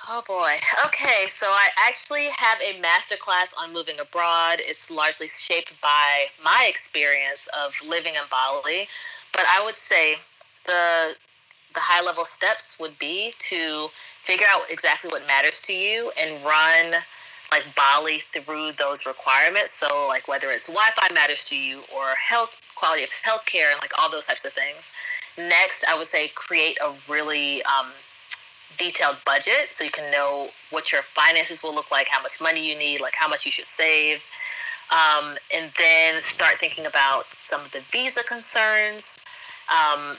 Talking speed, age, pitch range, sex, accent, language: 165 wpm, 20-39, 145-185 Hz, female, American, English